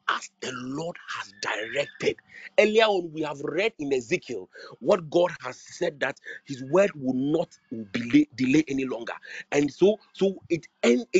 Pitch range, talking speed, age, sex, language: 155-240 Hz, 160 wpm, 40-59, male, English